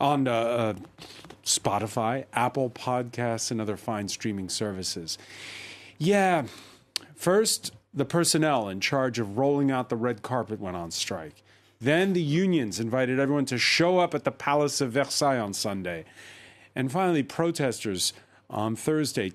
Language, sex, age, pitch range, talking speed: English, male, 40-59, 115-150 Hz, 140 wpm